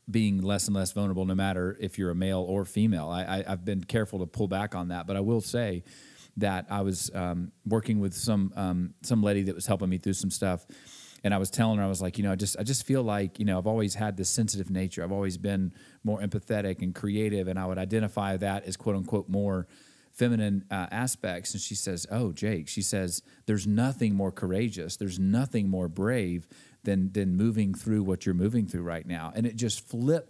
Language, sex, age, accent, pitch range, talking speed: English, male, 30-49, American, 95-115 Hz, 230 wpm